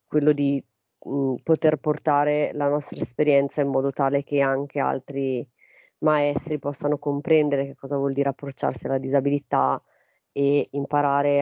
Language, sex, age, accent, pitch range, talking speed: Italian, female, 30-49, native, 140-150 Hz, 135 wpm